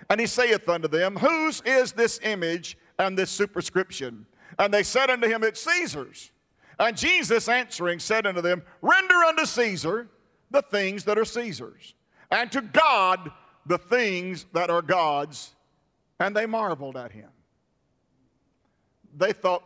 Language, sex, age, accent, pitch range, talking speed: English, male, 50-69, American, 165-215 Hz, 145 wpm